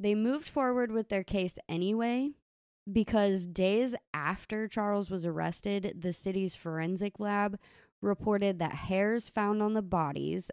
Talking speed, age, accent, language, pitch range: 135 wpm, 20-39, American, English, 170-210 Hz